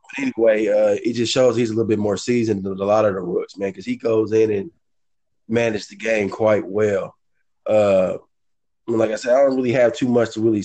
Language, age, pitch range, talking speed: English, 20-39, 100-115 Hz, 230 wpm